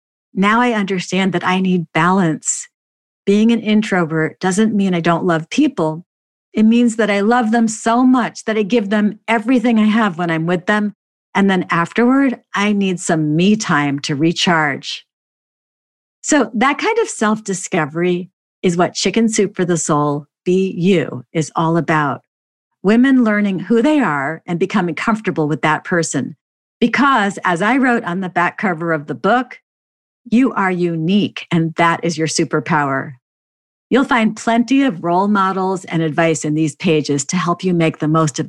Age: 50-69